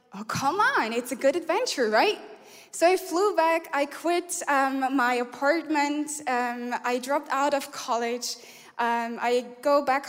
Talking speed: 160 wpm